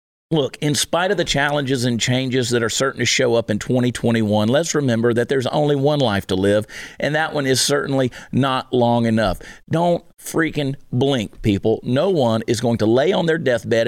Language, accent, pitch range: English, American, 110-135 Hz